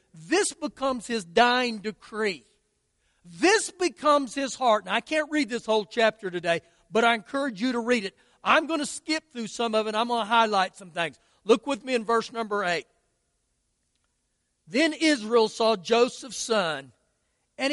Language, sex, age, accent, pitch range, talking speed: English, male, 50-69, American, 205-275 Hz, 175 wpm